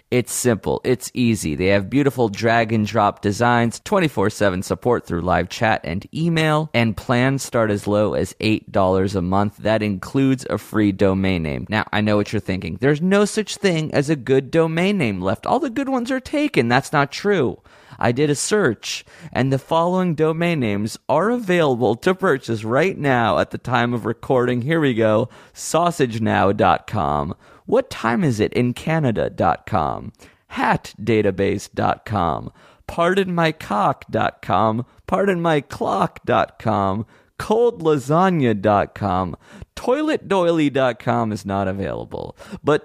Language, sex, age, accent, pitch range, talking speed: English, male, 30-49, American, 105-150 Hz, 145 wpm